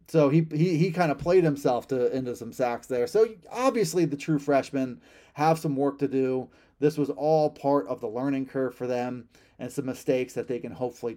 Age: 30-49